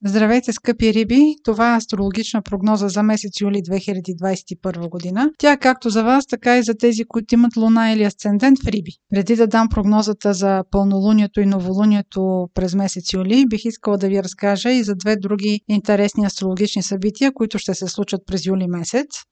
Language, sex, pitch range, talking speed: Bulgarian, female, 200-250 Hz, 175 wpm